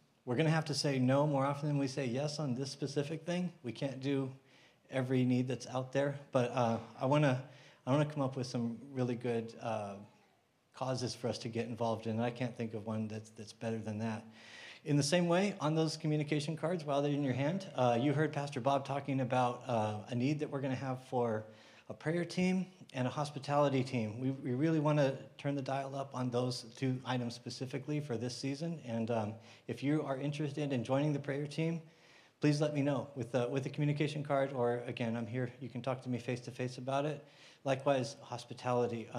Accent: American